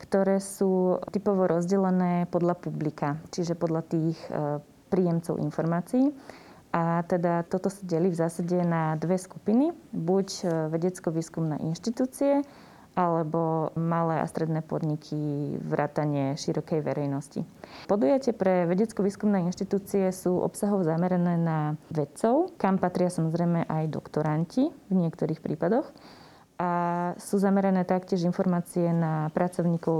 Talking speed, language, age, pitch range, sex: 110 wpm, Slovak, 20-39, 165-195 Hz, female